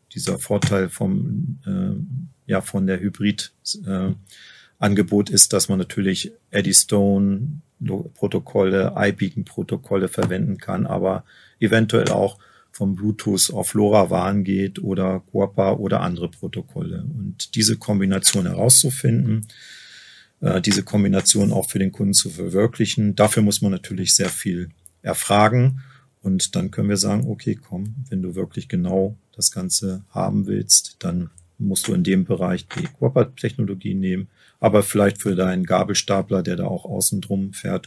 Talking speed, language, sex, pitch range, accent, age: 130 wpm, German, male, 95-110 Hz, German, 40-59